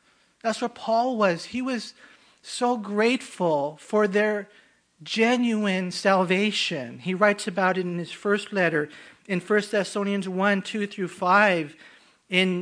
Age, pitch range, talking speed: 40-59, 175-215 Hz, 135 wpm